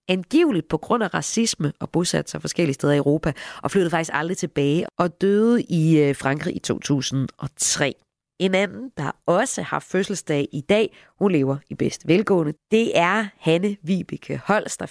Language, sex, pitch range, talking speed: Danish, female, 150-205 Hz, 165 wpm